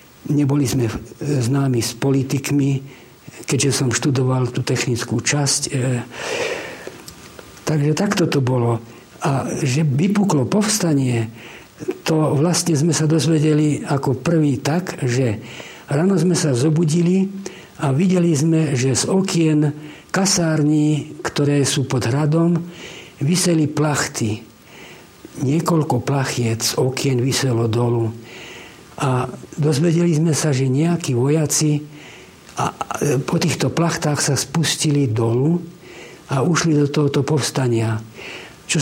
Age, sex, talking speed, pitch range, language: 60-79, male, 110 wpm, 130-160 Hz, Slovak